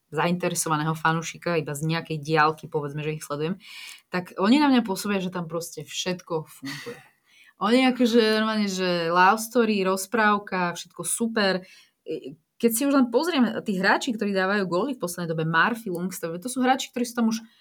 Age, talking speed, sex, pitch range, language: 20-39, 175 wpm, female, 170-220 Hz, Slovak